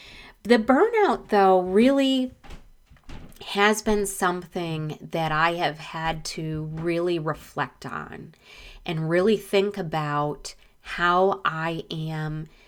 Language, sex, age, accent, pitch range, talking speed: English, female, 30-49, American, 180-225 Hz, 105 wpm